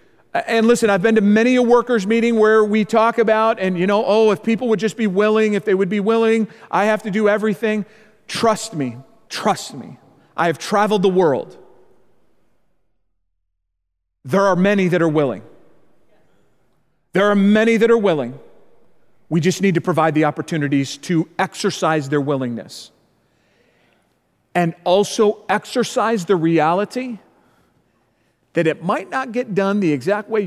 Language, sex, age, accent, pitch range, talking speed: English, male, 40-59, American, 155-215 Hz, 155 wpm